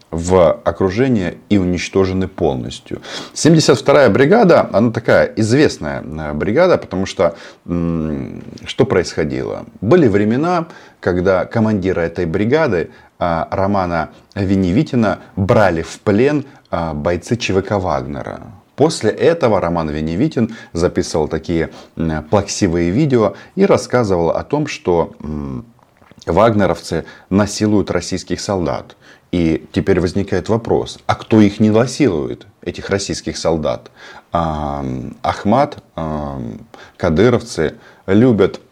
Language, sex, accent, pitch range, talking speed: Russian, male, native, 80-100 Hz, 100 wpm